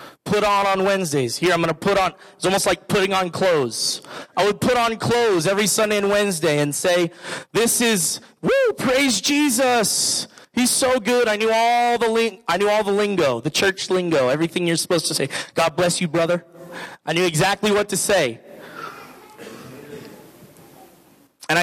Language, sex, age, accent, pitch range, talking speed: English, male, 30-49, American, 175-235 Hz, 165 wpm